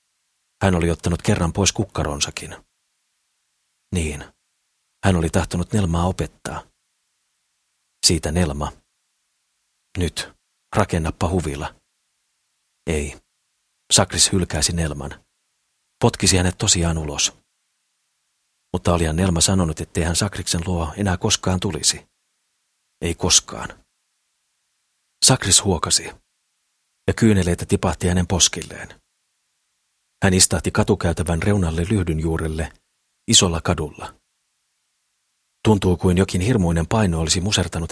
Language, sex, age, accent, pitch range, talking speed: Finnish, male, 40-59, native, 80-95 Hz, 95 wpm